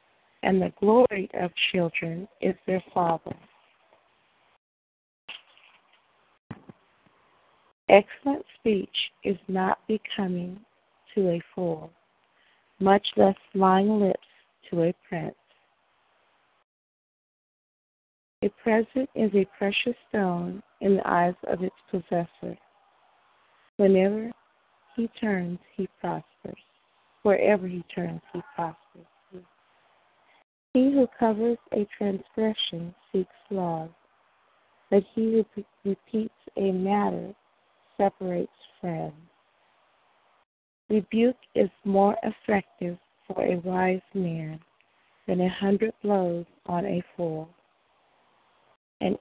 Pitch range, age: 175-210 Hz, 30-49